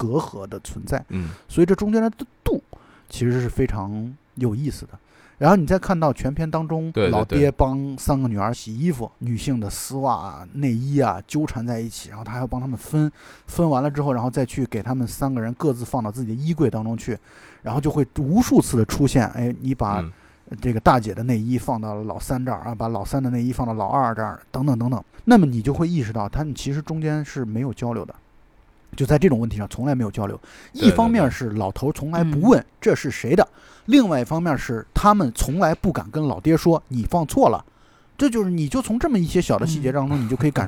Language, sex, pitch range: Chinese, male, 115-160 Hz